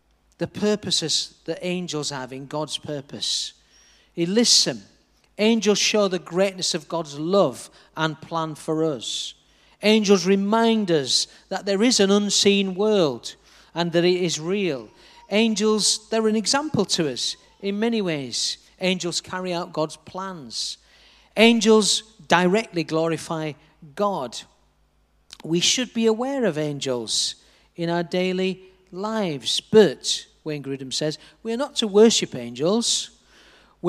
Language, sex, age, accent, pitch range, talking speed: English, male, 40-59, British, 155-220 Hz, 135 wpm